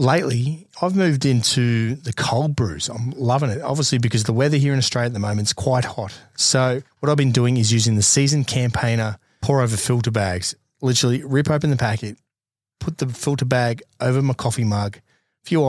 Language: English